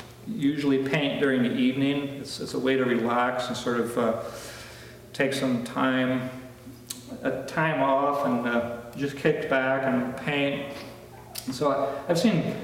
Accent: American